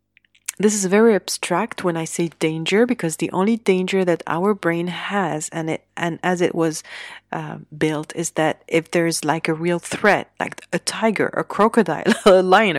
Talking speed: 185 wpm